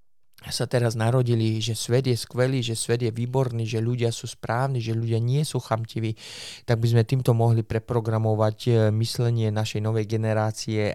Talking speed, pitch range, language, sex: 165 wpm, 105-115 Hz, Slovak, male